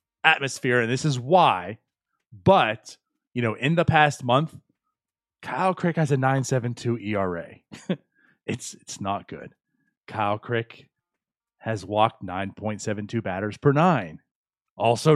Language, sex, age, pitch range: English, male, 30-49, 110-165 Hz